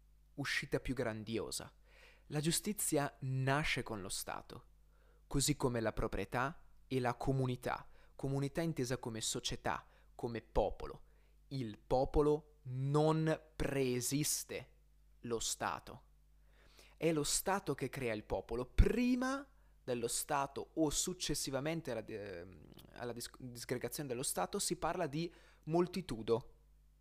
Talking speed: 110 wpm